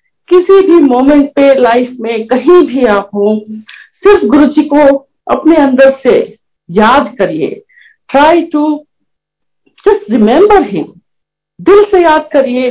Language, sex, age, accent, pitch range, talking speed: Hindi, female, 50-69, native, 225-310 Hz, 130 wpm